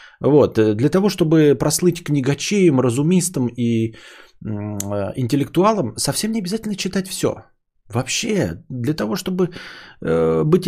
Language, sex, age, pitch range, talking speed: Bulgarian, male, 20-39, 110-150 Hz, 105 wpm